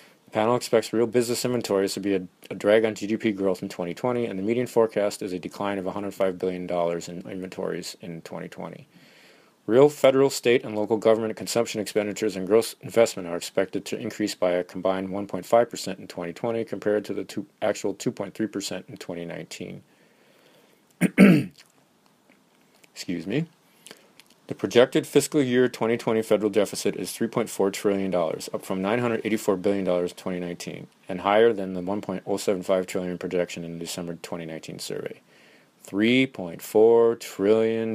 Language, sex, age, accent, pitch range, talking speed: English, male, 30-49, American, 95-115 Hz, 140 wpm